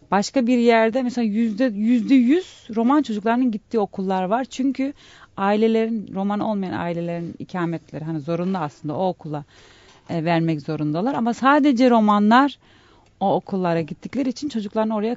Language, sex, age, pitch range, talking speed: Turkish, female, 30-49, 165-235 Hz, 130 wpm